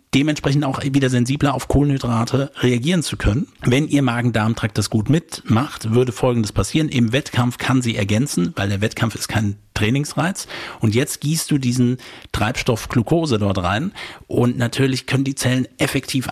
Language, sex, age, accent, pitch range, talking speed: German, male, 50-69, German, 115-140 Hz, 160 wpm